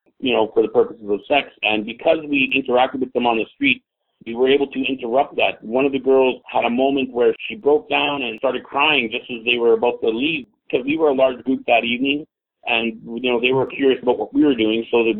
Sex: male